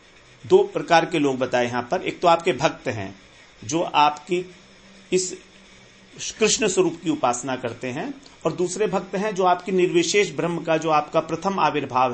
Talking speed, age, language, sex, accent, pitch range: 170 wpm, 40-59, Hindi, male, native, 160-230 Hz